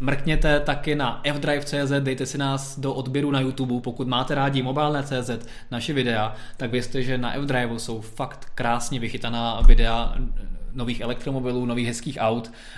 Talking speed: 150 wpm